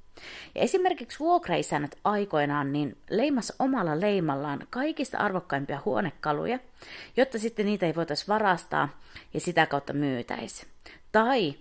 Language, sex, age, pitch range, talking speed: Finnish, female, 30-49, 145-235 Hz, 115 wpm